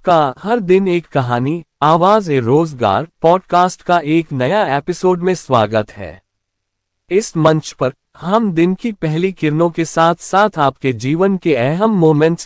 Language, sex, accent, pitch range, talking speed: Hindi, male, native, 125-185 Hz, 150 wpm